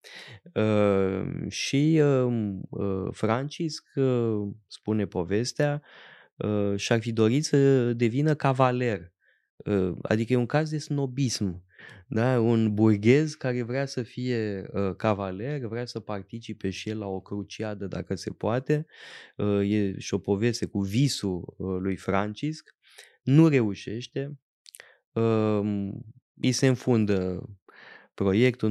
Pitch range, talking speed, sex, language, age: 105-135 Hz, 120 wpm, male, Romanian, 20-39